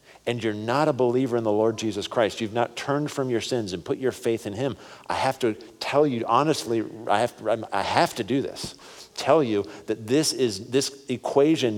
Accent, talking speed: American, 220 wpm